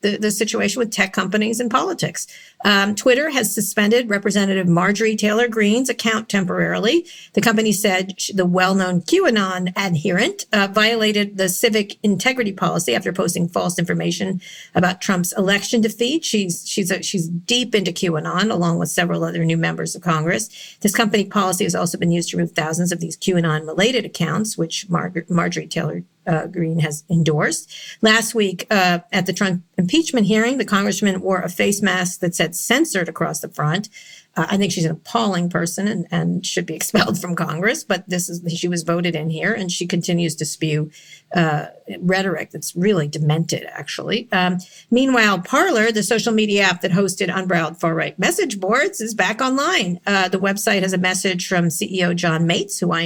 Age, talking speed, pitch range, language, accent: 50-69, 180 wpm, 175-210 Hz, English, American